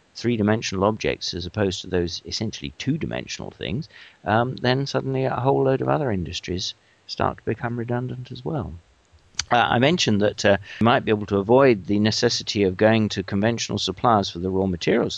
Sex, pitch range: male, 95-120 Hz